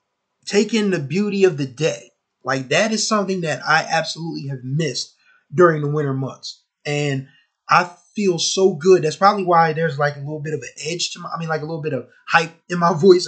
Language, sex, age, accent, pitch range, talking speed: English, male, 20-39, American, 150-190 Hz, 215 wpm